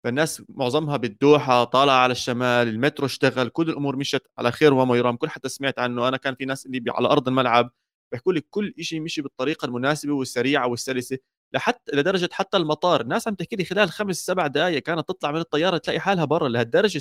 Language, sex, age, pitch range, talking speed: Arabic, male, 30-49, 125-165 Hz, 200 wpm